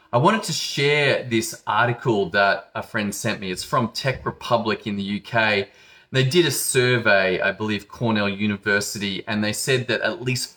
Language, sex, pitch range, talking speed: English, male, 110-130 Hz, 180 wpm